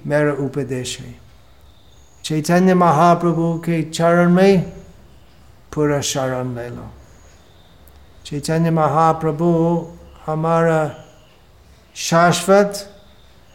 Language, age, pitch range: Hindi, 60-79, 115-170 Hz